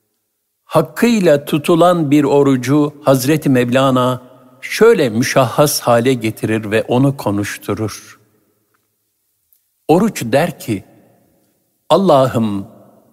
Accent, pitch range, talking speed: native, 125-165 Hz, 80 wpm